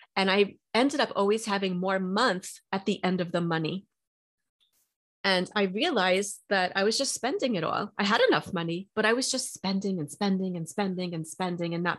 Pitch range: 175-210 Hz